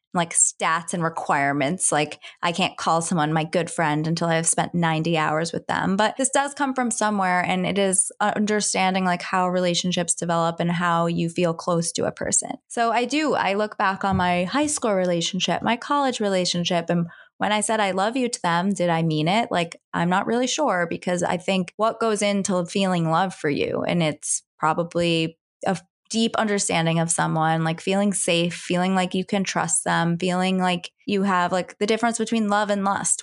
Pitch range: 170-215 Hz